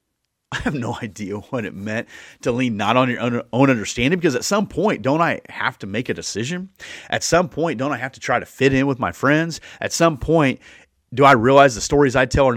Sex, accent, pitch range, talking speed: male, American, 100-135 Hz, 245 wpm